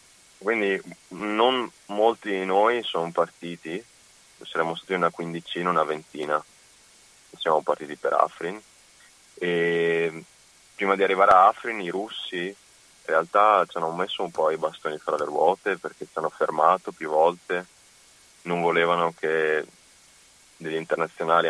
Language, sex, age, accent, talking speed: Italian, male, 30-49, native, 135 wpm